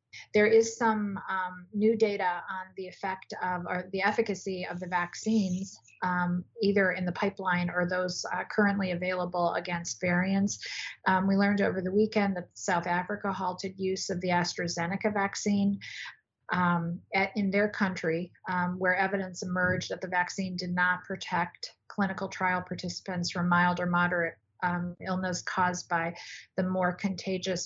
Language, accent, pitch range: English, American, 180-200 Hz